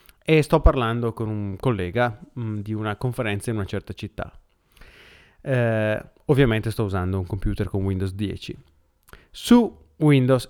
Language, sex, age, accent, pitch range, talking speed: Italian, male, 30-49, native, 105-135 Hz, 135 wpm